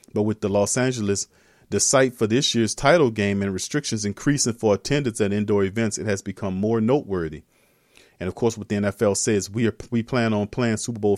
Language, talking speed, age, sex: English, 215 wpm, 40-59, male